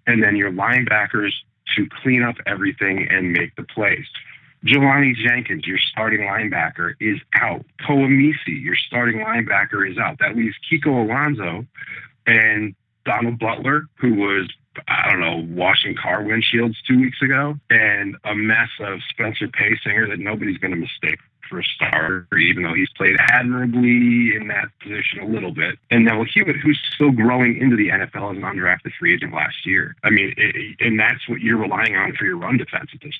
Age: 40-59